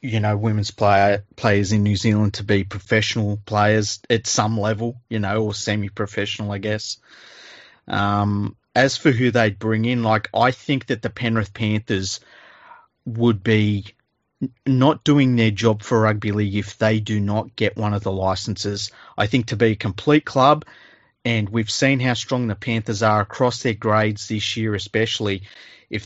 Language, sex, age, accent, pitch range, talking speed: English, male, 30-49, Australian, 105-120 Hz, 170 wpm